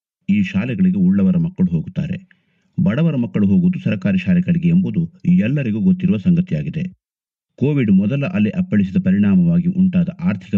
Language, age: Kannada, 50-69